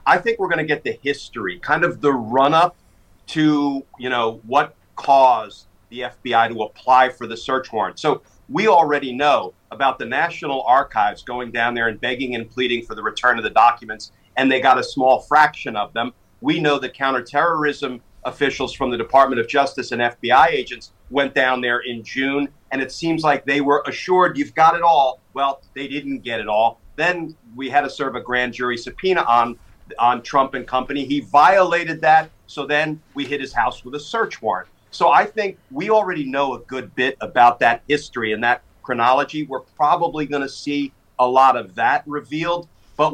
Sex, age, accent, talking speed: male, 40-59, American, 200 wpm